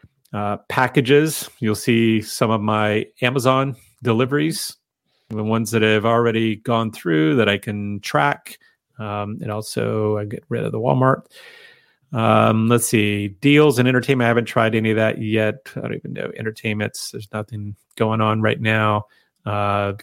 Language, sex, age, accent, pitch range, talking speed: English, male, 30-49, American, 110-125 Hz, 160 wpm